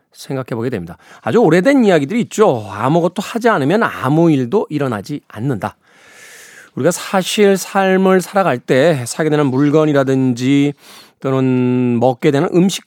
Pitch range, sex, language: 135-190 Hz, male, Korean